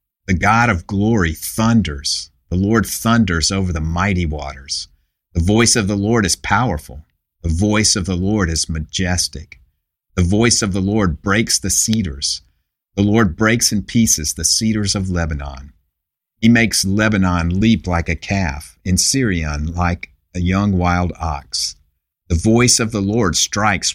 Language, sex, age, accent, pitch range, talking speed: English, male, 50-69, American, 80-100 Hz, 160 wpm